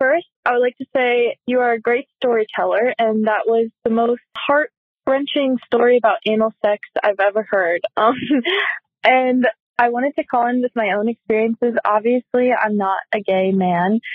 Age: 20-39